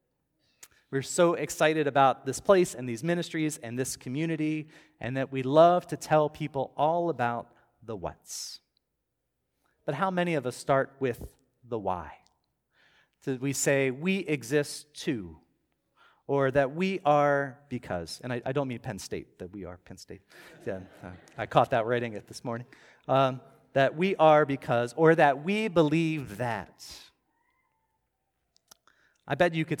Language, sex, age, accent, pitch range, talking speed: English, male, 40-59, American, 125-165 Hz, 155 wpm